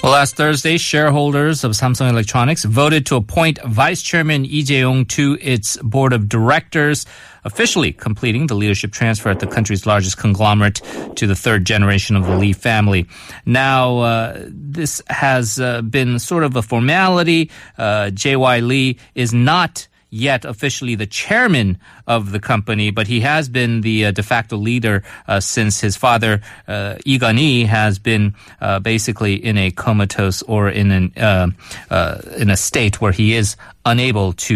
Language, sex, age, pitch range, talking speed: English, male, 30-49, 105-130 Hz, 160 wpm